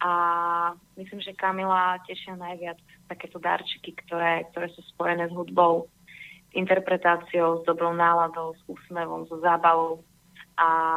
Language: Slovak